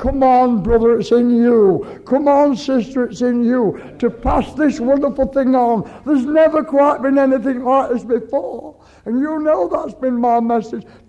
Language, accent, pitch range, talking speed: English, American, 230-265 Hz, 180 wpm